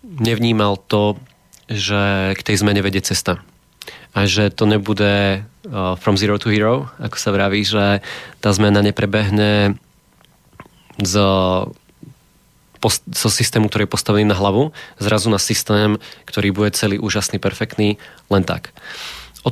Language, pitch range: Slovak, 100-110 Hz